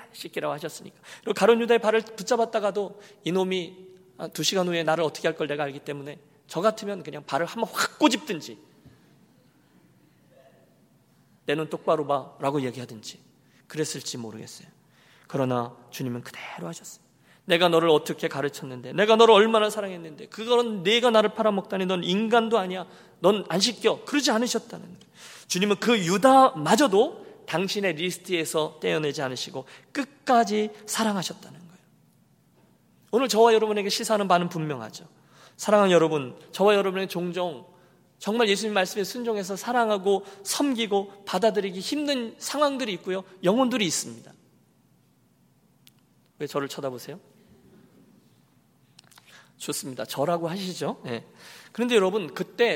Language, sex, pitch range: Korean, male, 155-220 Hz